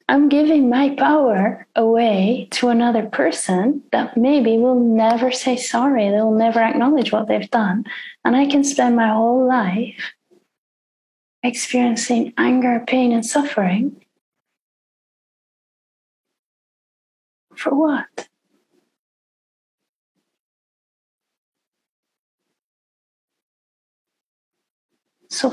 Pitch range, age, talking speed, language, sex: 210-255 Hz, 30-49, 80 wpm, English, female